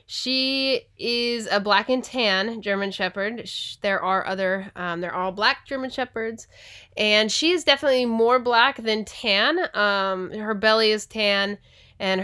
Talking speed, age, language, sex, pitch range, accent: 150 wpm, 20-39, English, female, 190-245 Hz, American